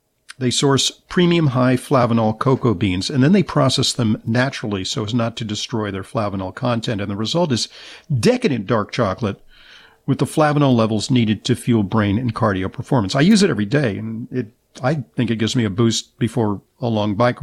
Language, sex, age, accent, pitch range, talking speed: English, male, 50-69, American, 110-140 Hz, 195 wpm